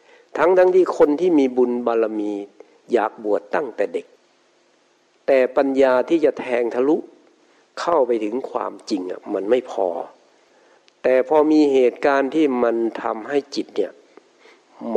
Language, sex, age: Thai, male, 60-79